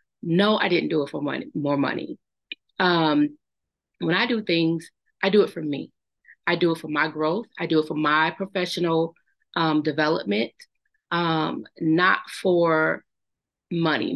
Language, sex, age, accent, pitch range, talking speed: English, female, 30-49, American, 160-225 Hz, 155 wpm